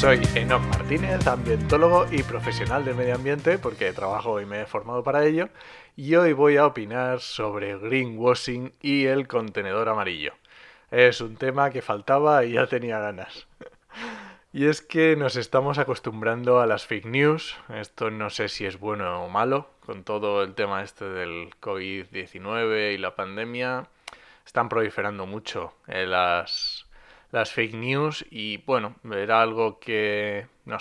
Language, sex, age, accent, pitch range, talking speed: Spanish, male, 20-39, Spanish, 105-135 Hz, 155 wpm